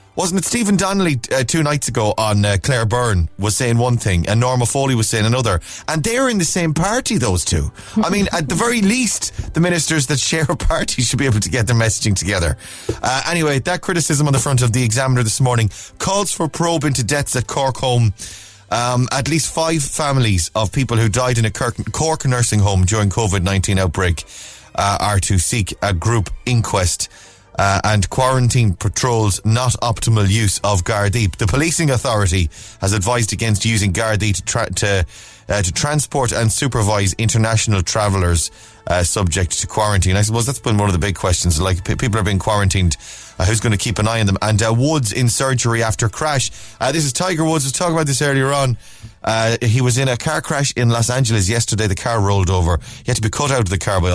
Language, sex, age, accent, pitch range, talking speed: English, male, 30-49, Irish, 100-135 Hz, 215 wpm